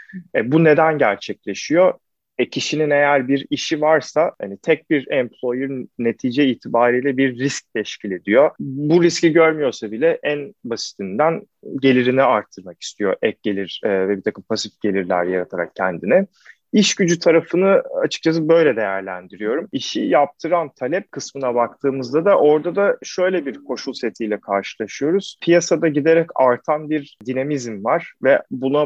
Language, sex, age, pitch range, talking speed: Turkish, male, 30-49, 120-160 Hz, 130 wpm